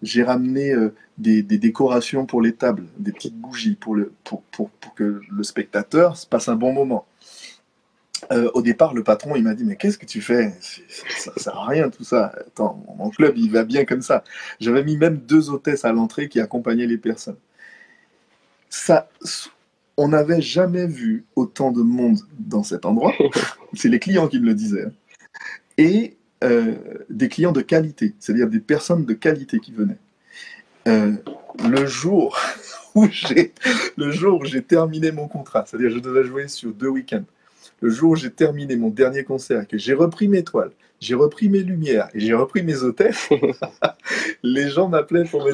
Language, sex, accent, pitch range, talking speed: French, male, French, 125-200 Hz, 190 wpm